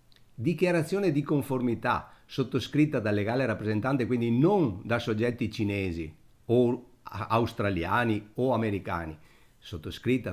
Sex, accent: male, native